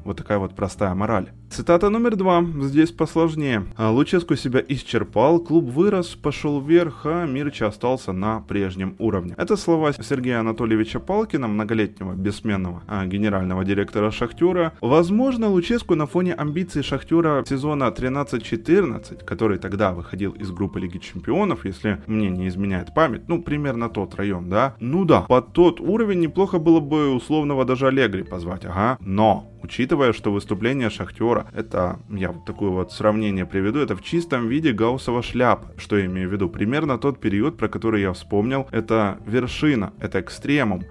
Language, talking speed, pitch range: Ukrainian, 155 wpm, 105-150 Hz